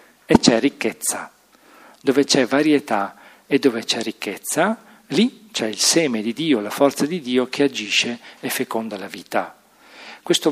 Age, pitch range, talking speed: 40-59, 115-140 Hz, 155 wpm